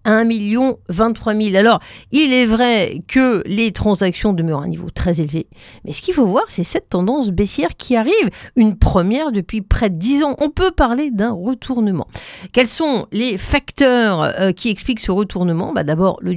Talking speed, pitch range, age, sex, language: 185 wpm, 185-260 Hz, 50-69, female, French